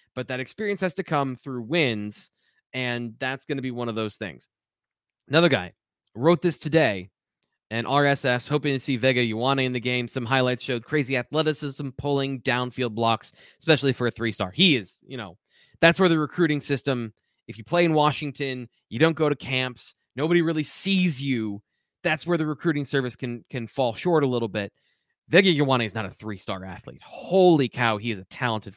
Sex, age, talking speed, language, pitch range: male, 20-39, 195 wpm, English, 120-150 Hz